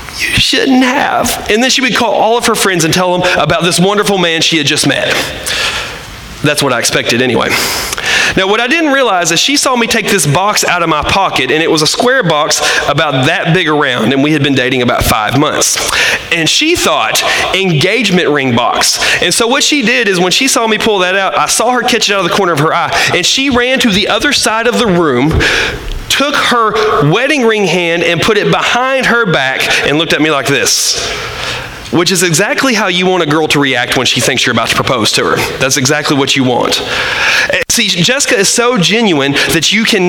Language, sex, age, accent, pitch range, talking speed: English, male, 30-49, American, 155-230 Hz, 230 wpm